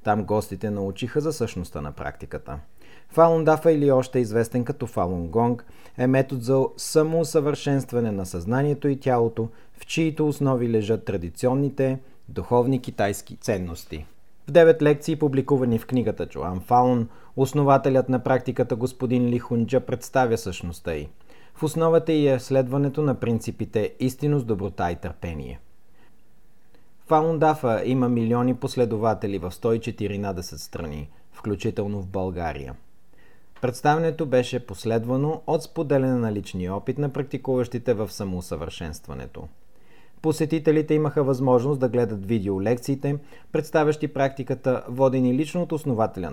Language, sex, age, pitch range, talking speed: Bulgarian, male, 40-59, 100-140 Hz, 120 wpm